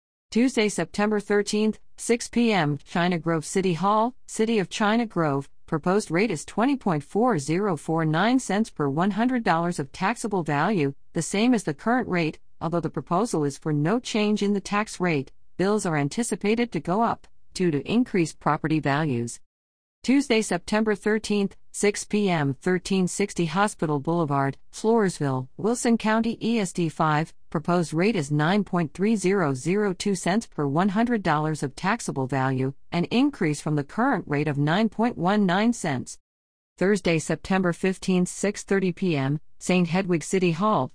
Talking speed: 135 wpm